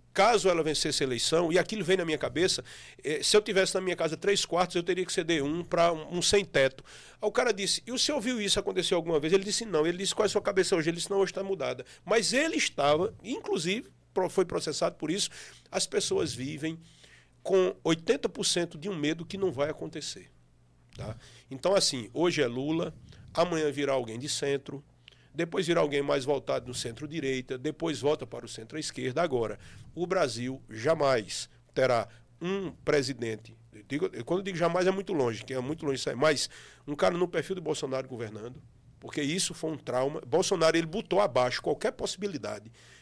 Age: 40-59